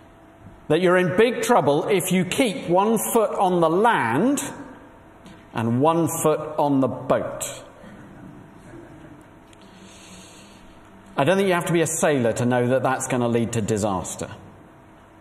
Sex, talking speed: male, 145 wpm